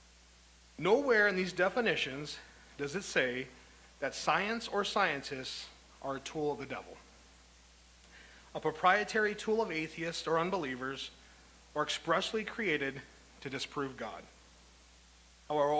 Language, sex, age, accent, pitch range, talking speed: English, male, 40-59, American, 115-165 Hz, 120 wpm